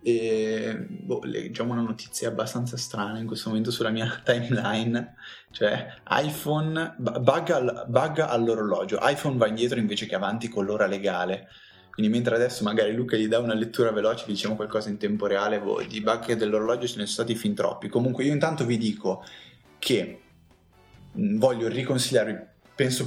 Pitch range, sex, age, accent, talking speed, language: 105-125 Hz, male, 20-39, native, 165 wpm, Italian